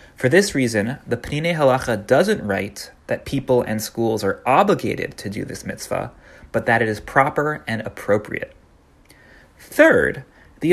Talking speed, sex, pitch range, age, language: 150 wpm, male, 125-180 Hz, 30-49, English